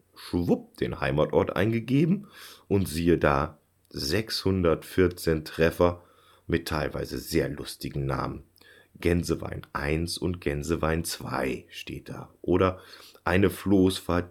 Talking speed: 100 wpm